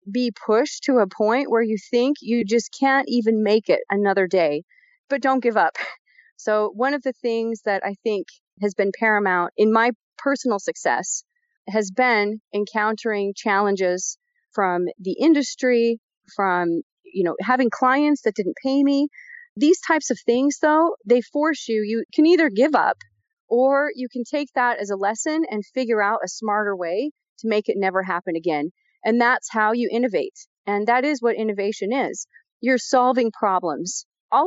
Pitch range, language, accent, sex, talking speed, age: 210-270 Hz, English, American, female, 170 wpm, 30-49